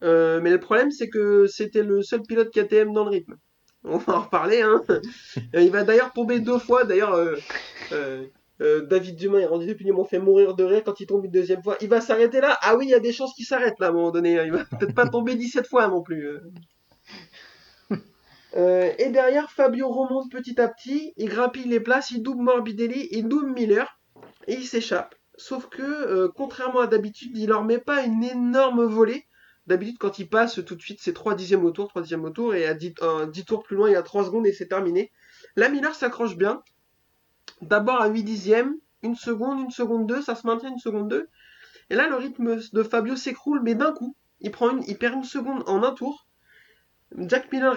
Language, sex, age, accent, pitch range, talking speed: French, male, 20-39, French, 195-255 Hz, 225 wpm